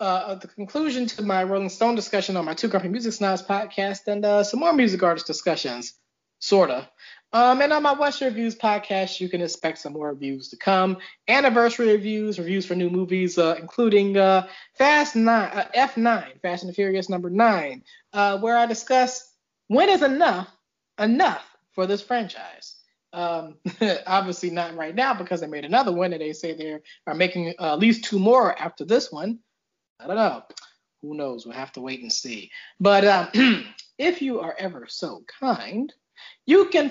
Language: English